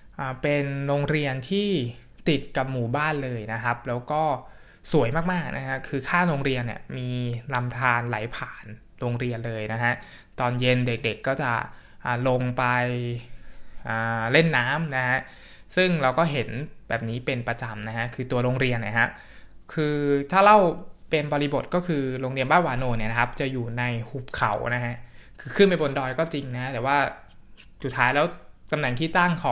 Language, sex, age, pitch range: Thai, male, 20-39, 120-150 Hz